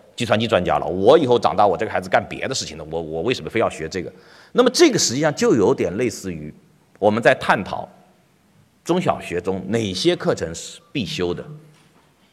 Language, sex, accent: Chinese, male, native